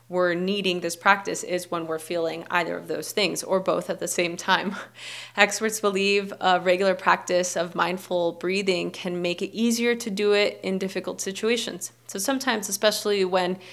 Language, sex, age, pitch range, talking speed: English, female, 20-39, 175-200 Hz, 175 wpm